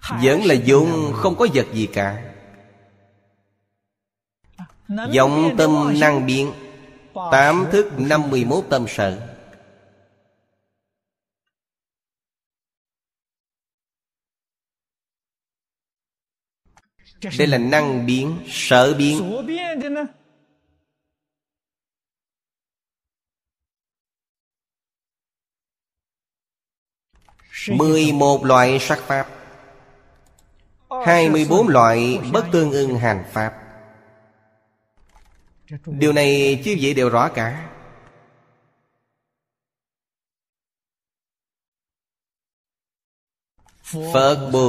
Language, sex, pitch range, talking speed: Vietnamese, male, 110-145 Hz, 60 wpm